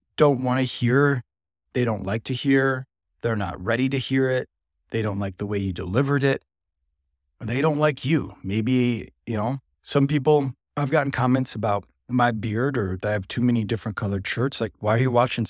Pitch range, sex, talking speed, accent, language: 100-130 Hz, male, 205 wpm, American, English